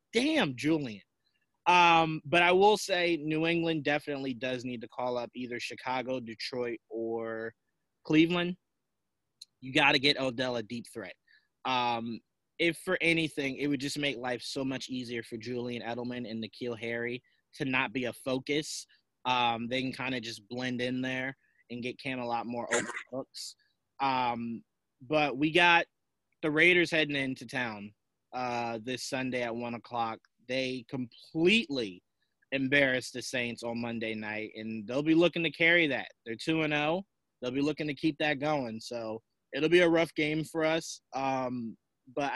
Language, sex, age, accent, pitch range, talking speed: English, male, 20-39, American, 120-155 Hz, 170 wpm